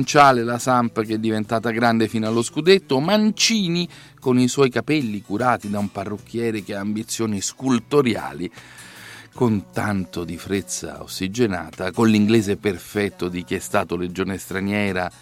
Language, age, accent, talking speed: Italian, 40-59, native, 140 wpm